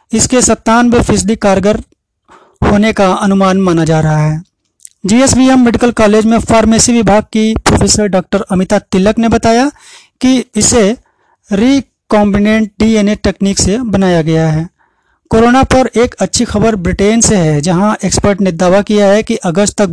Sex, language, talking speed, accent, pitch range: male, Hindi, 150 wpm, native, 185-225 Hz